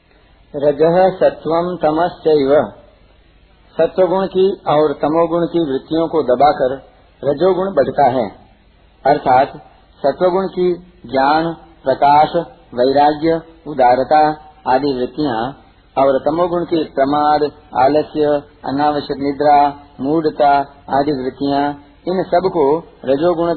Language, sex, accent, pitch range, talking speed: Hindi, male, native, 135-170 Hz, 95 wpm